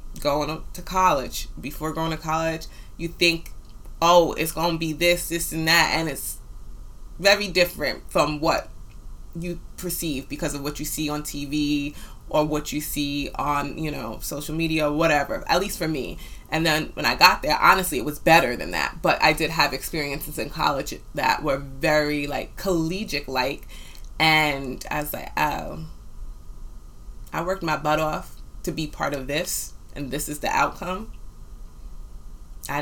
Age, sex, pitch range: 20-39, female, 140-165 Hz